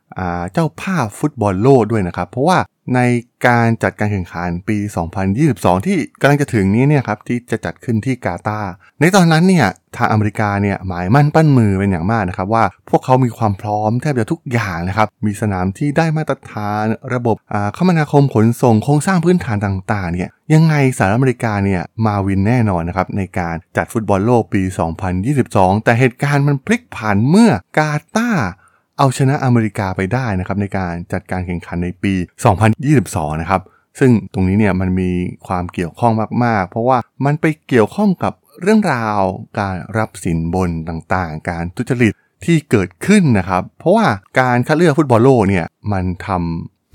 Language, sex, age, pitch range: Thai, male, 20-39, 95-130 Hz